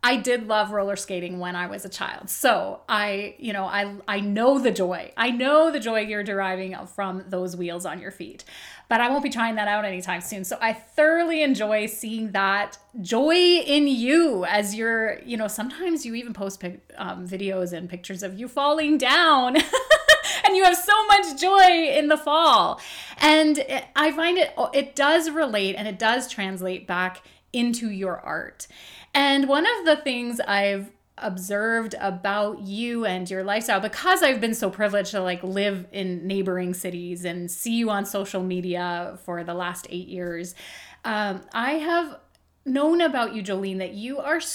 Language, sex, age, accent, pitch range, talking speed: English, female, 30-49, American, 190-275 Hz, 180 wpm